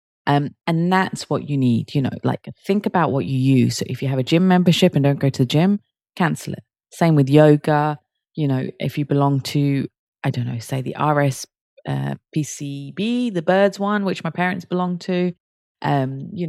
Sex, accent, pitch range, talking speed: female, British, 130-175 Hz, 205 wpm